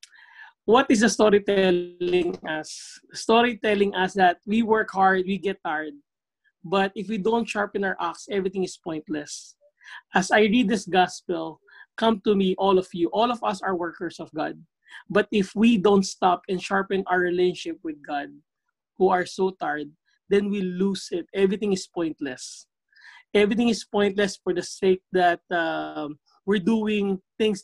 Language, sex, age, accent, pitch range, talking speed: English, male, 20-39, Filipino, 180-215 Hz, 165 wpm